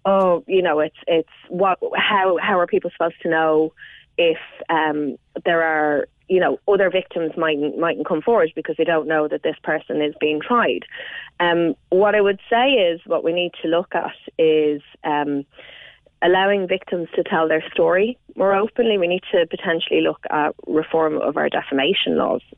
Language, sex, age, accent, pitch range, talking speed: English, female, 30-49, Irish, 155-185 Hz, 185 wpm